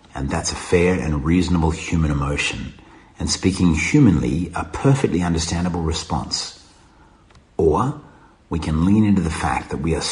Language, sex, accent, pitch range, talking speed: English, male, Australian, 80-95 Hz, 150 wpm